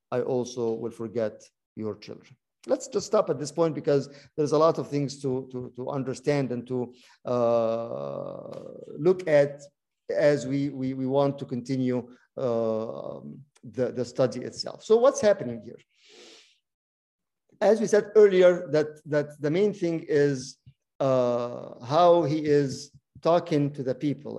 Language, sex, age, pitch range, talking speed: English, male, 50-69, 125-160 Hz, 150 wpm